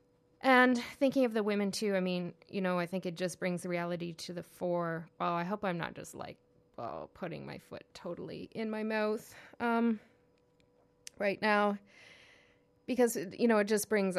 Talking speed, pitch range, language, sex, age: 185 wpm, 175-205 Hz, English, female, 20-39